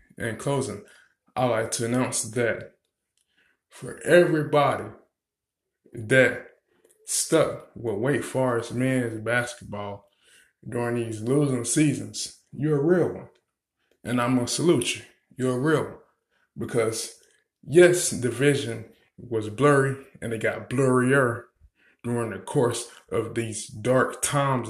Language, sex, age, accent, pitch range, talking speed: English, male, 20-39, American, 120-140 Hz, 125 wpm